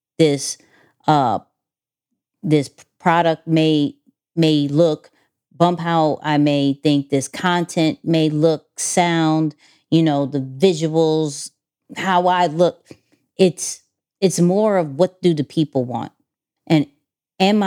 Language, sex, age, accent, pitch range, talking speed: English, female, 40-59, American, 145-175 Hz, 120 wpm